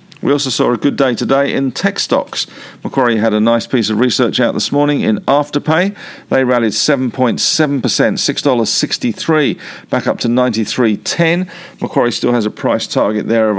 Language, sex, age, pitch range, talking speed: English, male, 50-69, 110-140 Hz, 170 wpm